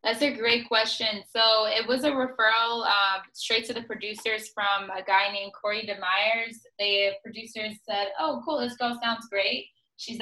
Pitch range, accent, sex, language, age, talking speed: 195-235 Hz, American, female, English, 10-29, 175 wpm